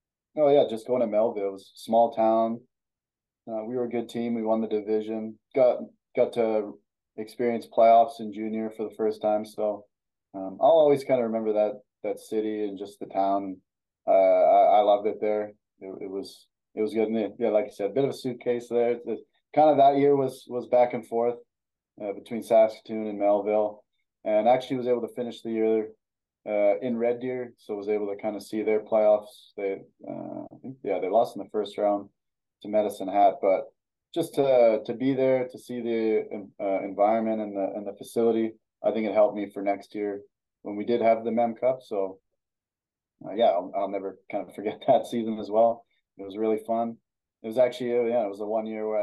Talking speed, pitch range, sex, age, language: 215 wpm, 105-120 Hz, male, 20-39, English